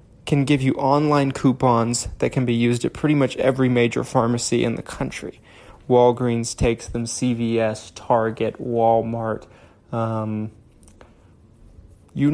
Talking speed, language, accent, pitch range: 125 wpm, English, American, 120-145 Hz